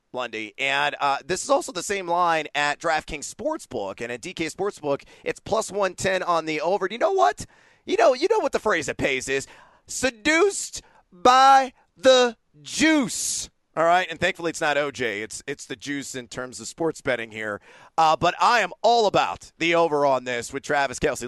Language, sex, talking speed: English, male, 195 wpm